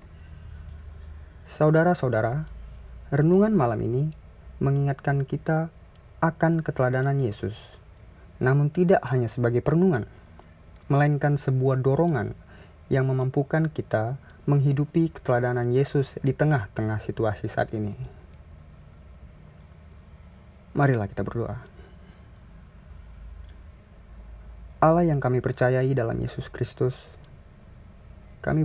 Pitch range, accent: 90-140 Hz, native